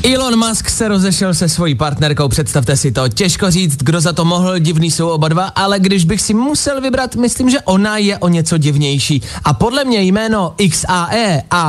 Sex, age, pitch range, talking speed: male, 20-39, 140-200 Hz, 200 wpm